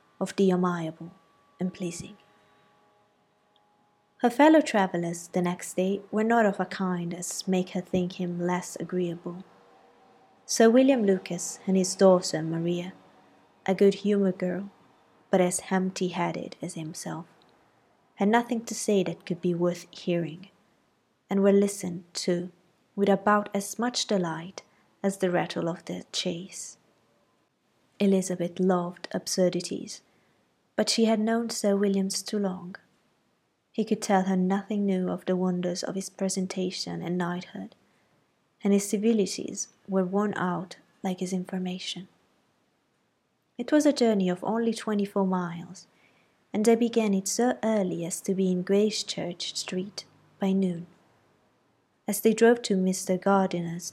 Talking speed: 140 wpm